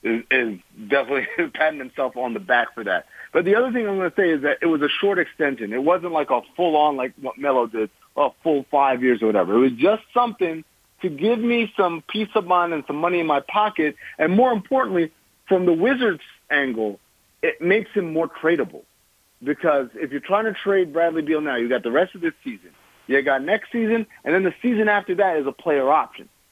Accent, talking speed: American, 225 wpm